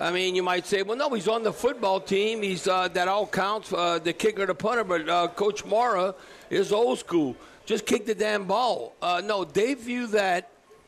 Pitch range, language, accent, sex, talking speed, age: 170-210 Hz, English, American, male, 215 wpm, 60-79